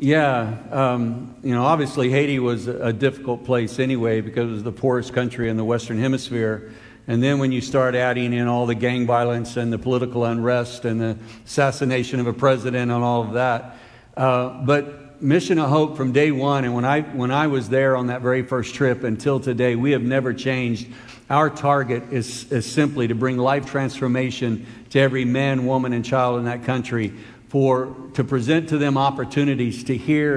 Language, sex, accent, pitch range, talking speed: English, male, American, 120-140 Hz, 195 wpm